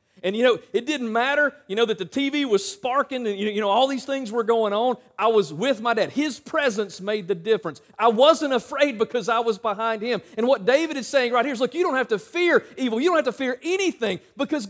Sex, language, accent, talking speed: male, English, American, 255 wpm